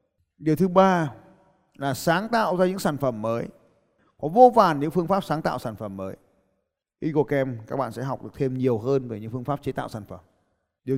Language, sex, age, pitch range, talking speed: Vietnamese, male, 20-39, 130-185 Hz, 220 wpm